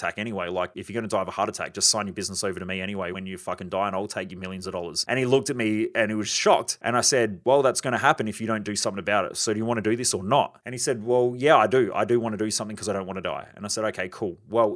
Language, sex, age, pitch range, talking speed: English, male, 30-49, 110-140 Hz, 360 wpm